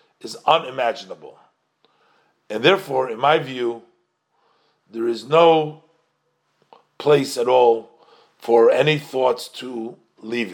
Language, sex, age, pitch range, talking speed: English, male, 50-69, 115-155 Hz, 95 wpm